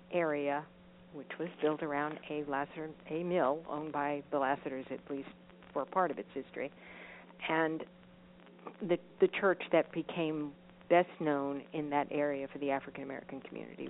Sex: female